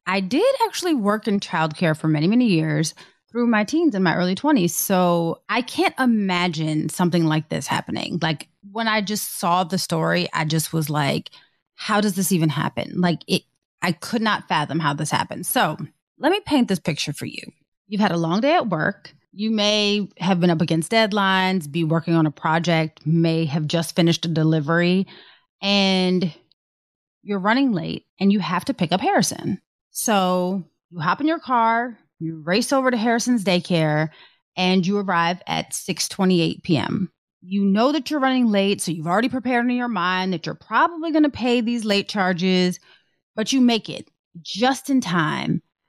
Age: 30-49